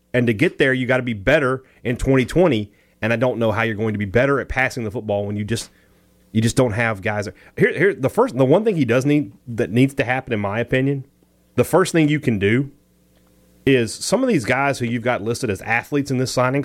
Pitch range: 115-165 Hz